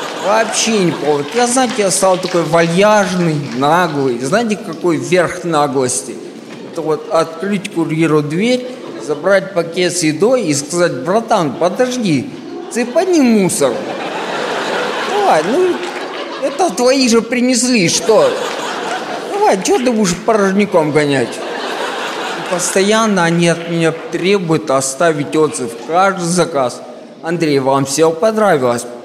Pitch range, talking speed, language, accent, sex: 160-225 Hz, 120 wpm, Russian, native, male